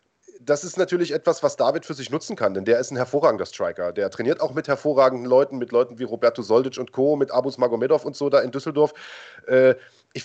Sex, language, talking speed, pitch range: male, German, 230 wpm, 130-160 Hz